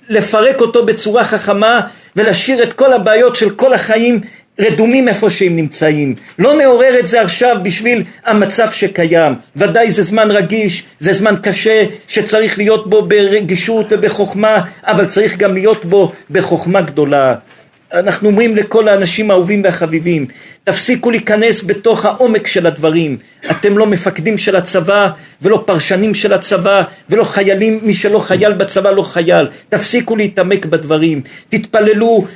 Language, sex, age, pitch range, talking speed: Hebrew, male, 50-69, 195-225 Hz, 140 wpm